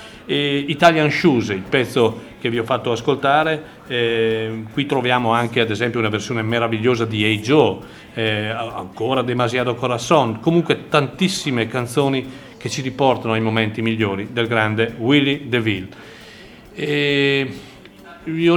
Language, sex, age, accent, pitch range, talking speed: Italian, male, 40-59, native, 115-140 Hz, 135 wpm